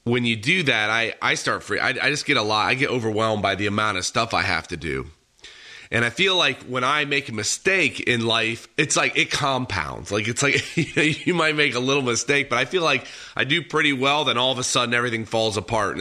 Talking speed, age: 250 wpm, 30-49